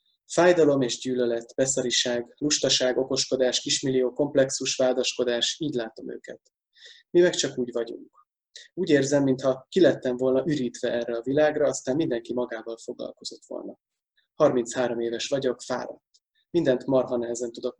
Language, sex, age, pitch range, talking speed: Hungarian, male, 20-39, 125-145 Hz, 135 wpm